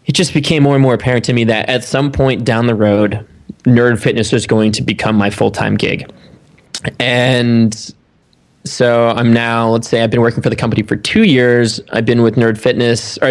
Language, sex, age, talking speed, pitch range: English, male, 20-39, 210 wpm, 110-130 Hz